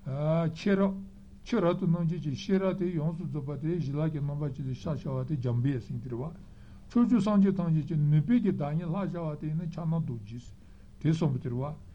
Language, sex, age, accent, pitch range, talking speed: Italian, male, 60-79, Turkish, 145-190 Hz, 125 wpm